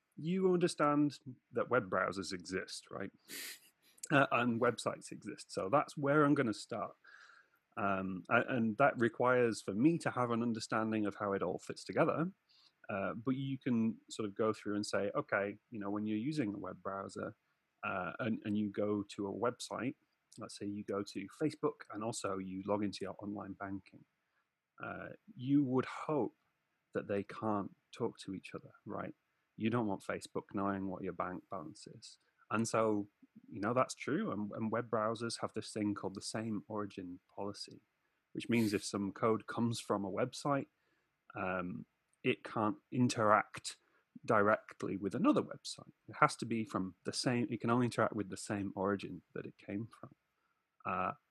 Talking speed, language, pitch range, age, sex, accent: 175 wpm, English, 100-125 Hz, 30-49, male, British